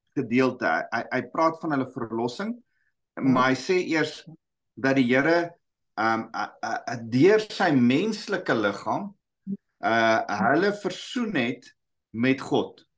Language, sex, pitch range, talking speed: English, male, 115-170 Hz, 110 wpm